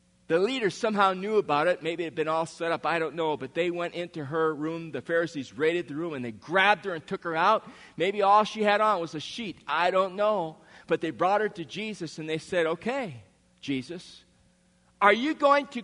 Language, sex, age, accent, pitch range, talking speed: English, male, 40-59, American, 145-220 Hz, 230 wpm